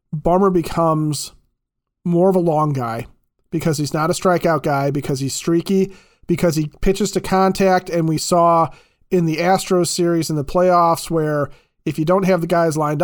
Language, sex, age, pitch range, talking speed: English, male, 30-49, 145-185 Hz, 180 wpm